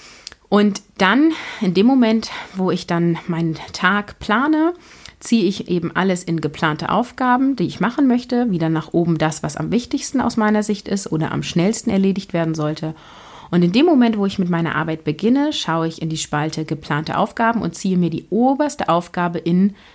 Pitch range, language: 160-200 Hz, German